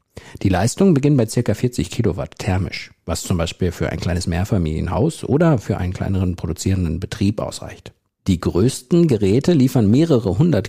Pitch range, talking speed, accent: 95-140 Hz, 155 wpm, German